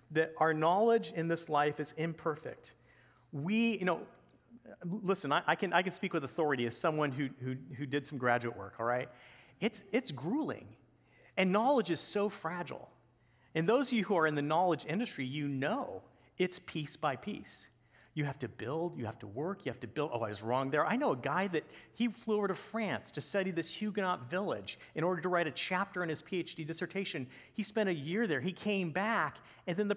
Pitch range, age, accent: 140-195 Hz, 40-59, American